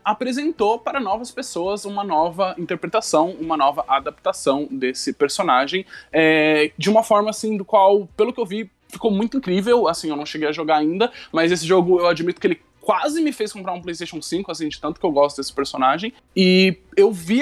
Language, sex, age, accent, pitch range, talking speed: Portuguese, male, 20-39, Brazilian, 140-195 Hz, 200 wpm